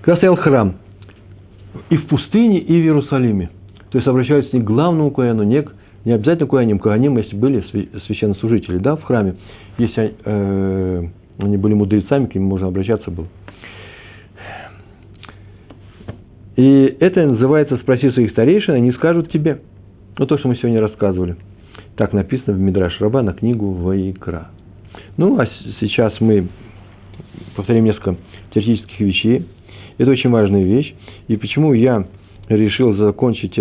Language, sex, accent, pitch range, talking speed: Russian, male, native, 100-120 Hz, 135 wpm